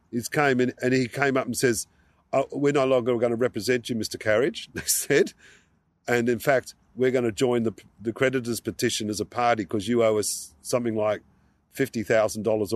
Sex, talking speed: male, 200 wpm